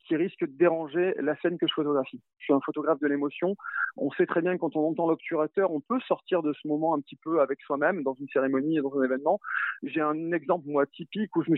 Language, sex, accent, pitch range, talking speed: French, male, French, 145-180 Hz, 255 wpm